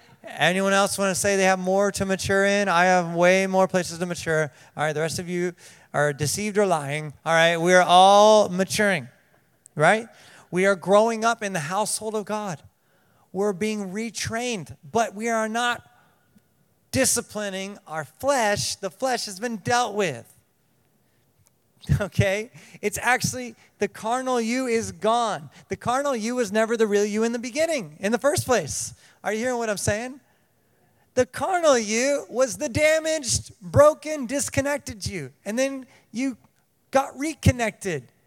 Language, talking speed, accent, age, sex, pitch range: English, 160 wpm, American, 30-49, male, 170-235 Hz